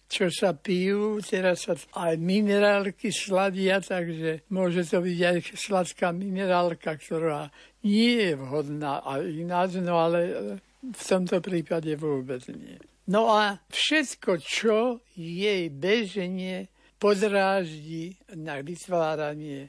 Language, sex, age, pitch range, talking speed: Slovak, male, 60-79, 165-210 Hz, 115 wpm